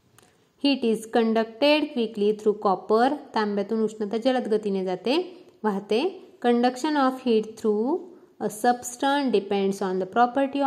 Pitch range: 210-260 Hz